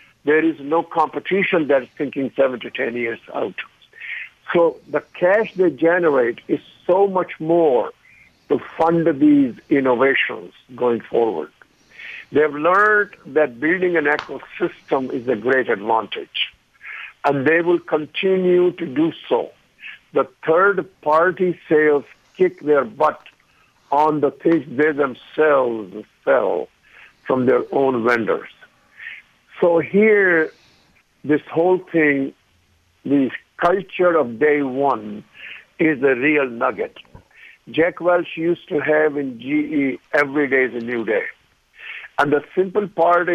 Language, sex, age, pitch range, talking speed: English, male, 60-79, 140-180 Hz, 125 wpm